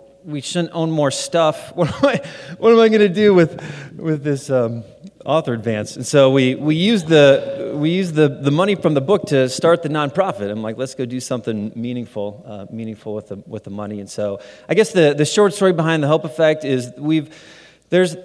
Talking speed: 215 wpm